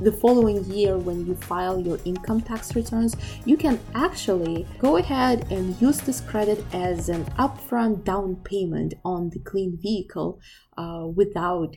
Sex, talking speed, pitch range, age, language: female, 155 wpm, 180-240 Hz, 20-39, English